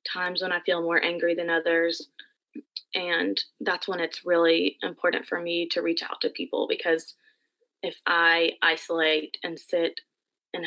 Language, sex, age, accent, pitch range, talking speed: English, female, 20-39, American, 165-190 Hz, 155 wpm